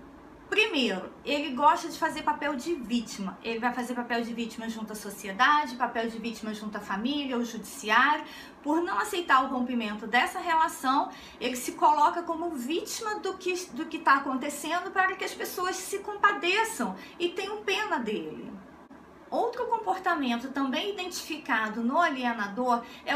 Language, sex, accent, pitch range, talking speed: Portuguese, female, Brazilian, 250-365 Hz, 155 wpm